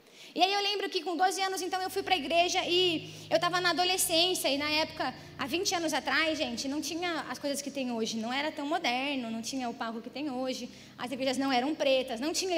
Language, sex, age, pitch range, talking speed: Portuguese, female, 20-39, 275-365 Hz, 250 wpm